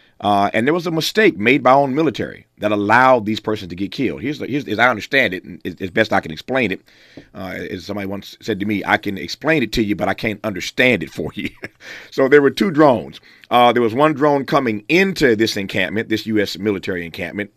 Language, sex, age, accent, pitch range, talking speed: English, male, 40-59, American, 105-135 Hz, 240 wpm